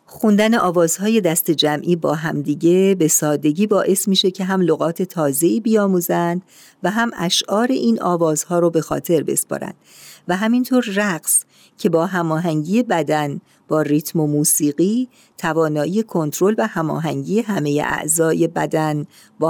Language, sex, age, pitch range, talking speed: Persian, female, 50-69, 160-205 Hz, 130 wpm